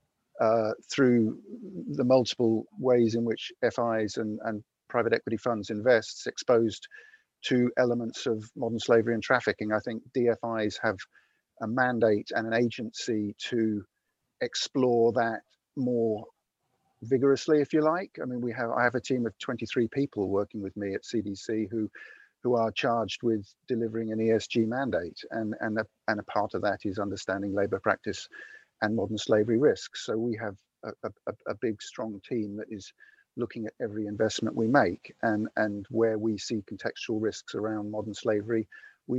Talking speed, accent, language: 165 wpm, British, English